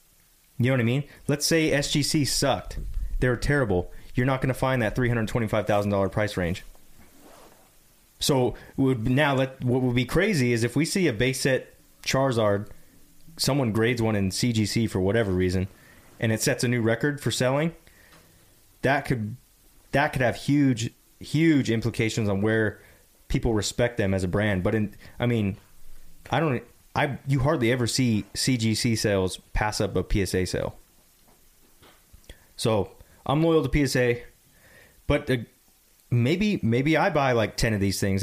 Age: 30-49